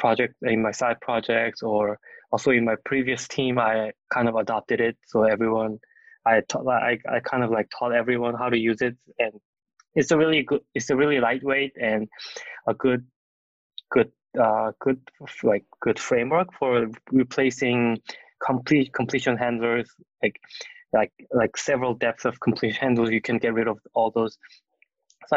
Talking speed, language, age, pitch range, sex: 165 wpm, English, 20-39, 115-140 Hz, male